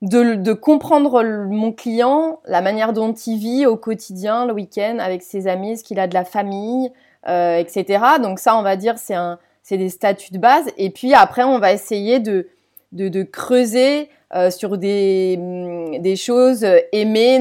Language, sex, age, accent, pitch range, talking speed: French, female, 30-49, French, 195-250 Hz, 185 wpm